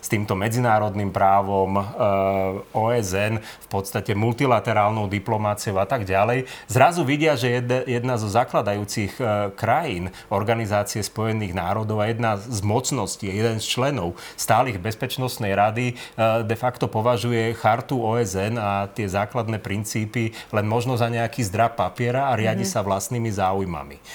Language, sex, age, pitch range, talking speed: Slovak, male, 30-49, 105-125 Hz, 130 wpm